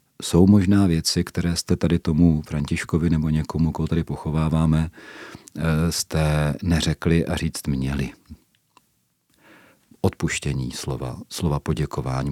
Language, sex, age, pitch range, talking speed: Czech, male, 40-59, 75-85 Hz, 105 wpm